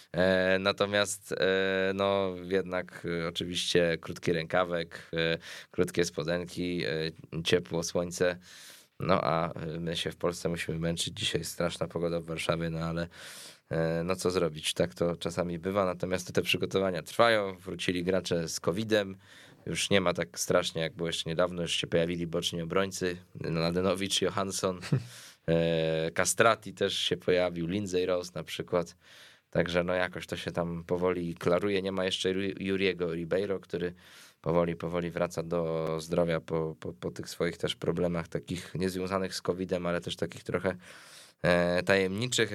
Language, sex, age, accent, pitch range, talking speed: Polish, male, 20-39, native, 85-95 Hz, 140 wpm